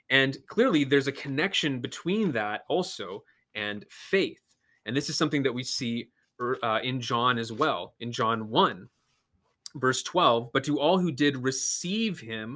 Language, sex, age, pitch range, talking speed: English, male, 30-49, 110-145 Hz, 160 wpm